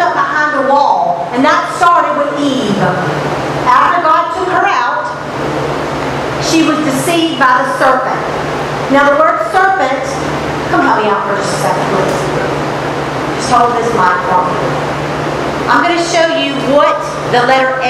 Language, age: English, 50-69